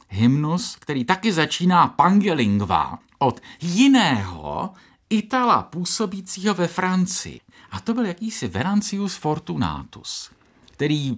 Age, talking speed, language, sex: 50-69, 95 wpm, Czech, male